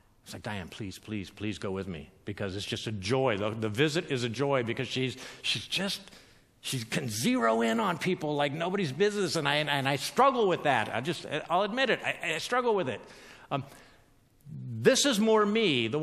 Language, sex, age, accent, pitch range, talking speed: English, male, 50-69, American, 115-180 Hz, 210 wpm